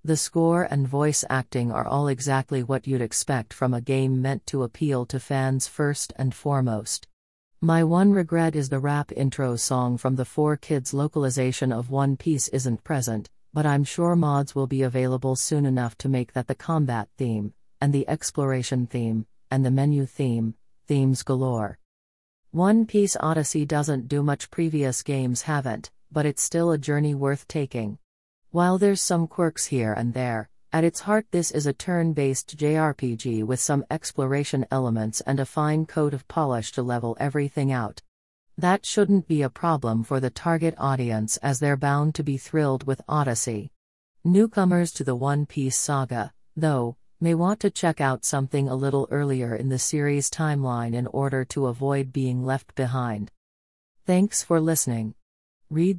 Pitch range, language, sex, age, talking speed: 125-150 Hz, English, female, 40-59, 170 wpm